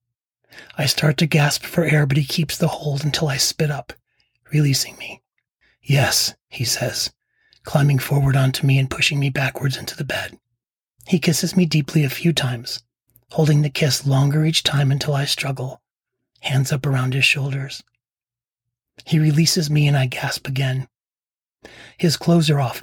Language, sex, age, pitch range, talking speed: English, male, 30-49, 130-150 Hz, 165 wpm